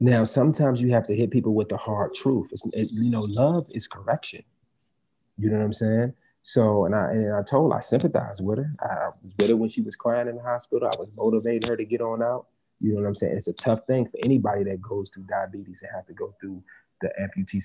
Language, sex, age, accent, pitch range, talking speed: English, male, 30-49, American, 105-125 Hz, 255 wpm